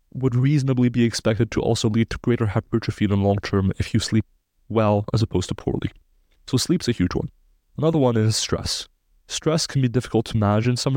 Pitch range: 105-125 Hz